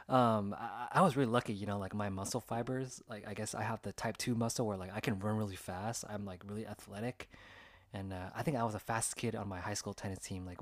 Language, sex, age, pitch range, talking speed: English, male, 20-39, 100-125 Hz, 270 wpm